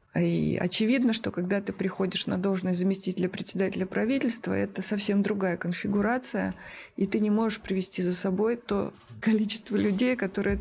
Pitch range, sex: 190-220 Hz, female